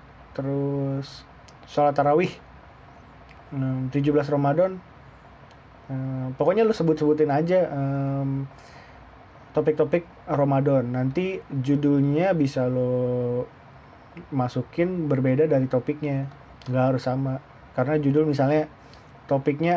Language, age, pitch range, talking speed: Indonesian, 20-39, 135-155 Hz, 90 wpm